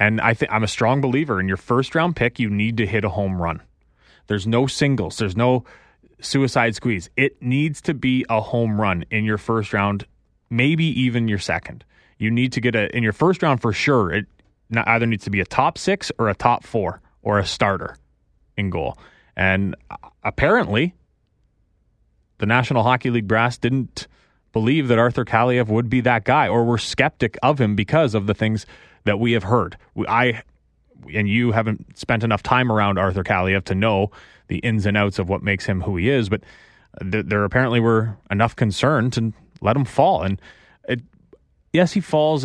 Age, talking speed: 30-49, 190 wpm